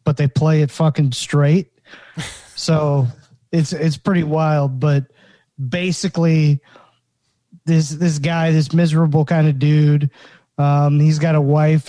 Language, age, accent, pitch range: English, 20-39, American, 145-160 Hz